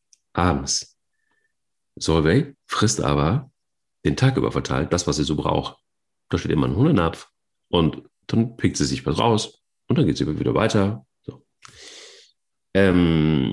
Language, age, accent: German, 40-59, German